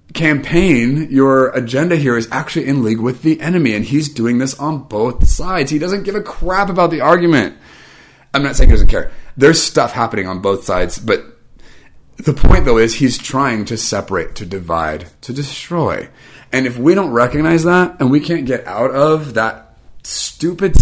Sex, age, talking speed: male, 30-49, 185 wpm